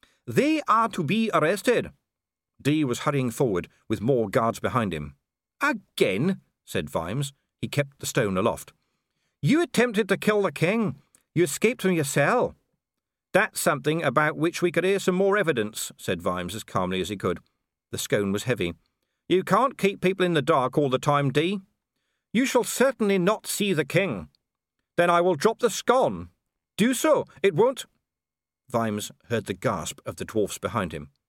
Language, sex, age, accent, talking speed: English, male, 50-69, British, 175 wpm